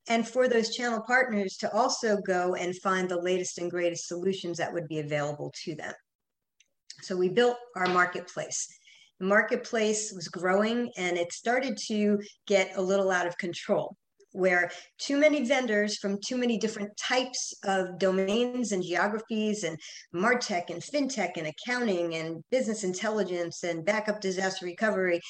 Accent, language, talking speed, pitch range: American, English, 155 wpm, 180-230 Hz